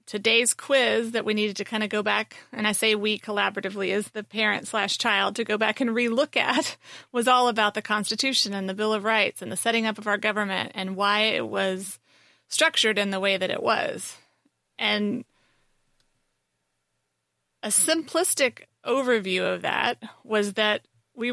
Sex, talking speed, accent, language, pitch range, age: female, 175 wpm, American, English, 200-230 Hz, 30-49